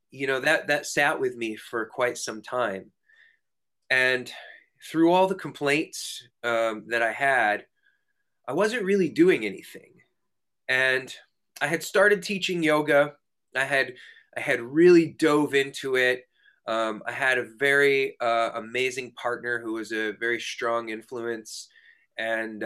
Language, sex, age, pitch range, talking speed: English, male, 20-39, 115-155 Hz, 145 wpm